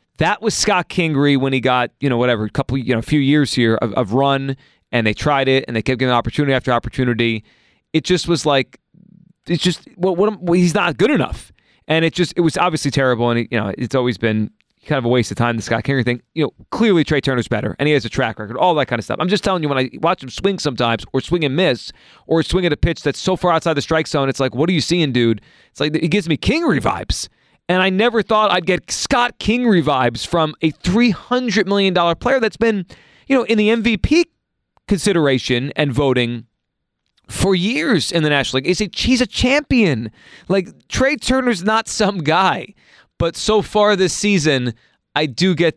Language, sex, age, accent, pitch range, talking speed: English, male, 30-49, American, 130-185 Hz, 230 wpm